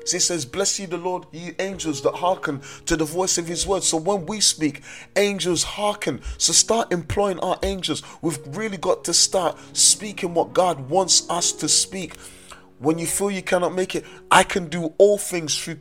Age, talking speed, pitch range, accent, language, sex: 30-49, 205 wpm, 145-180 Hz, British, English, male